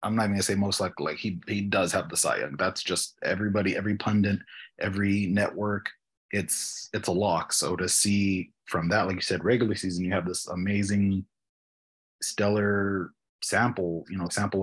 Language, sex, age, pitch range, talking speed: English, male, 30-49, 90-105 Hz, 180 wpm